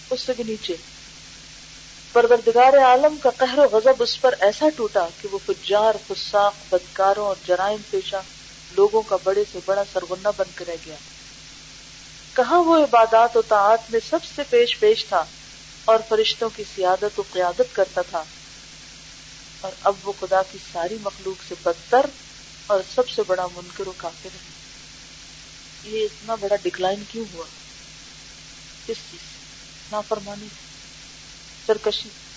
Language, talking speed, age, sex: Urdu, 100 wpm, 40-59, female